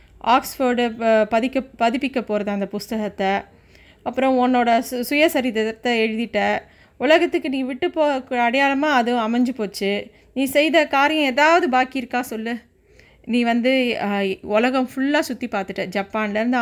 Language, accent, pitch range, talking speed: Tamil, native, 210-260 Hz, 120 wpm